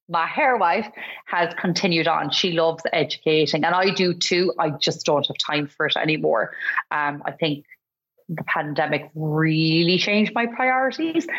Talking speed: 160 wpm